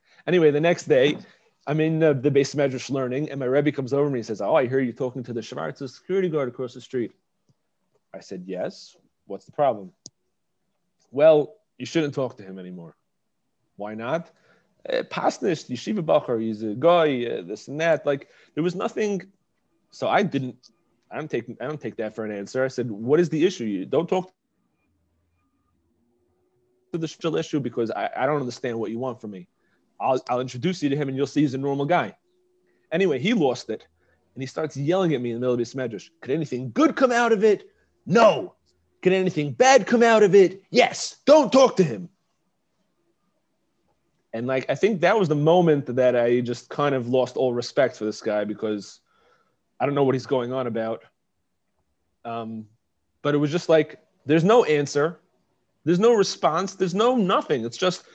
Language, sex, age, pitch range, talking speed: English, male, 30-49, 120-175 Hz, 195 wpm